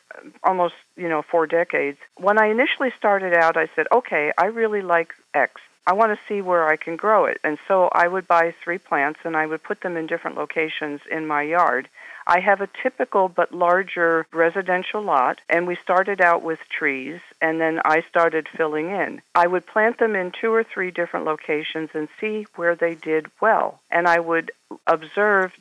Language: English